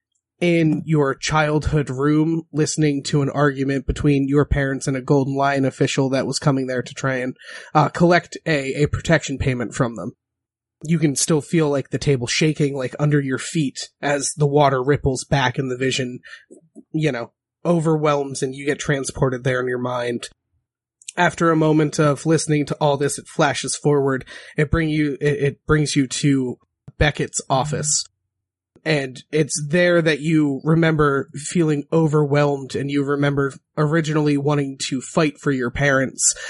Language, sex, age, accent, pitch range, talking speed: English, male, 30-49, American, 135-155 Hz, 165 wpm